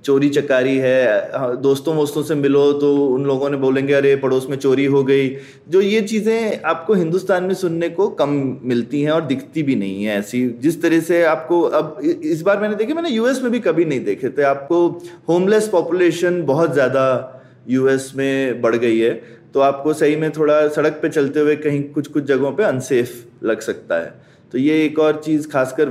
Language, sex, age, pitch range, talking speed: Hindi, male, 20-39, 145-240 Hz, 200 wpm